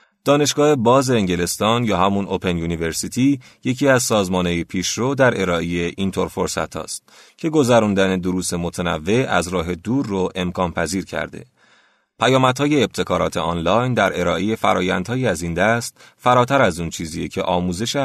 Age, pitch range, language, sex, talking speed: 30-49, 90-120 Hz, Persian, male, 135 wpm